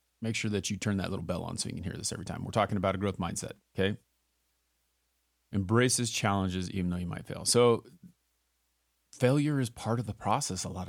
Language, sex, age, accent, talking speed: English, male, 30-49, American, 215 wpm